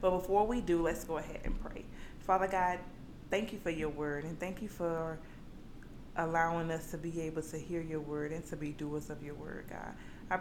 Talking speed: 220 wpm